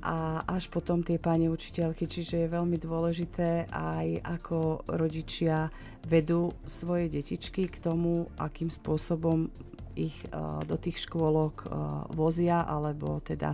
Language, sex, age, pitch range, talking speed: Slovak, female, 40-59, 150-170 Hz, 120 wpm